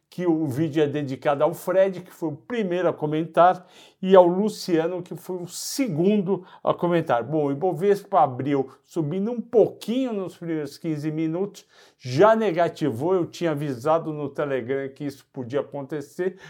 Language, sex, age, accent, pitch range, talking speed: Portuguese, male, 60-79, Brazilian, 140-185 Hz, 160 wpm